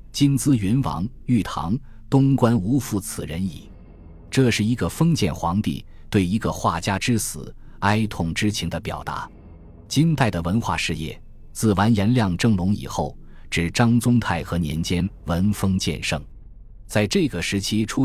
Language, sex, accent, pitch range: Chinese, male, native, 85-115 Hz